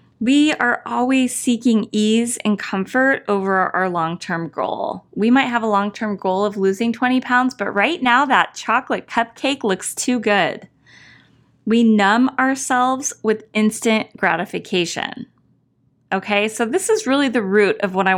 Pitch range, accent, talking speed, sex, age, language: 205-270 Hz, American, 150 wpm, female, 20-39, English